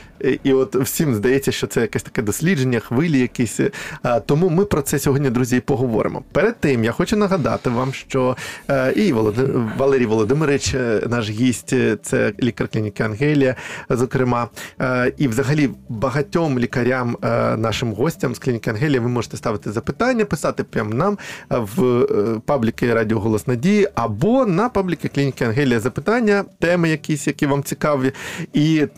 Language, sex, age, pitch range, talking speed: Ukrainian, male, 20-39, 125-185 Hz, 145 wpm